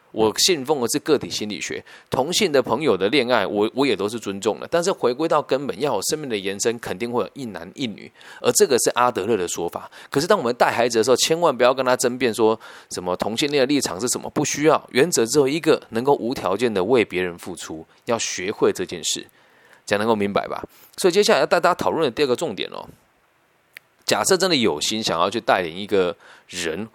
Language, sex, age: Chinese, male, 20-39